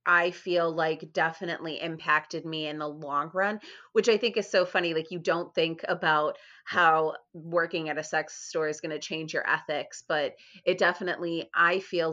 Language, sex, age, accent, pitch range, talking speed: English, female, 30-49, American, 155-185 Hz, 185 wpm